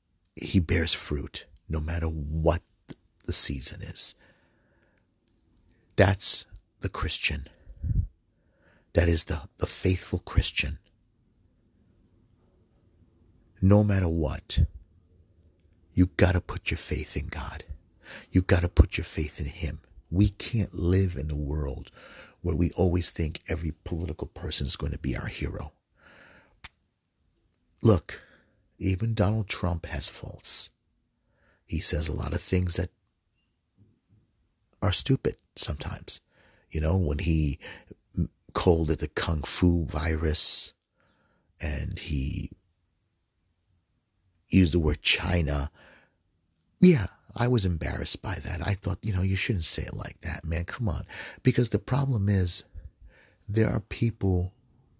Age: 50-69